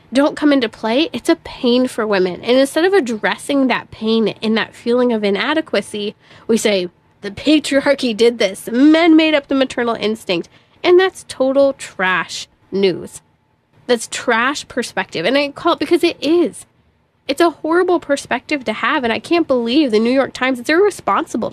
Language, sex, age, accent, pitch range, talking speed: English, female, 20-39, American, 225-300 Hz, 175 wpm